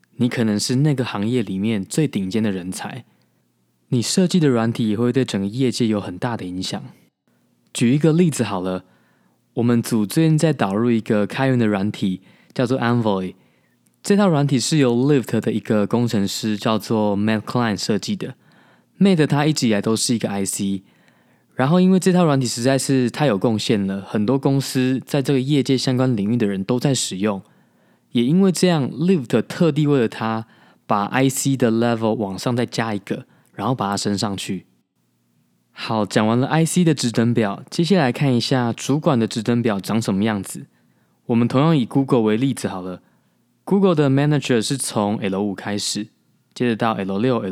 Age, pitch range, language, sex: 20-39, 105-135 Hz, Chinese, male